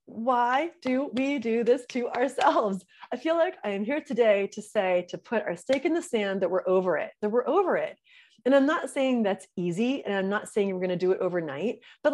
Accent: American